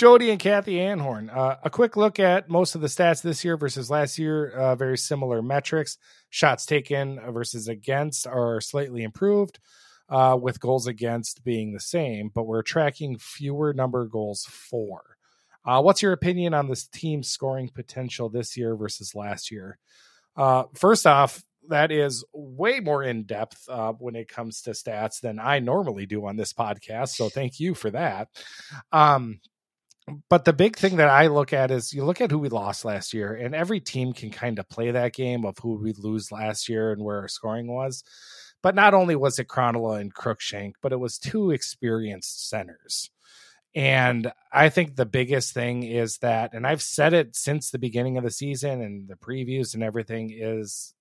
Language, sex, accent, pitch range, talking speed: English, male, American, 115-150 Hz, 190 wpm